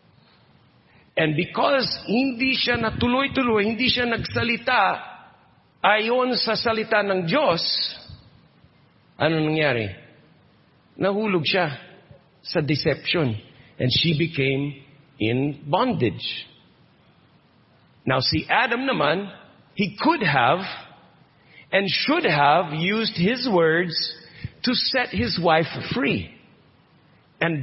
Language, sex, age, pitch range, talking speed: English, male, 50-69, 140-190 Hz, 95 wpm